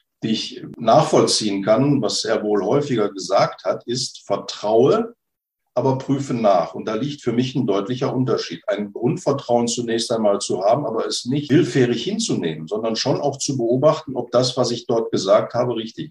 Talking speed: 175 wpm